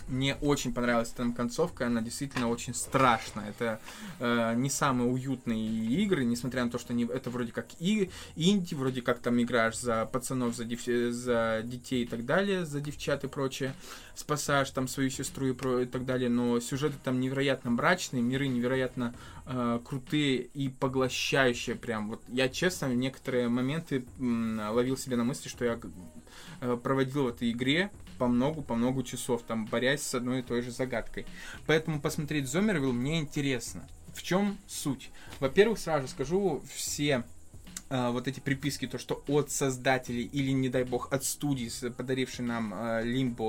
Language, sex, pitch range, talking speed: Russian, male, 120-140 Hz, 160 wpm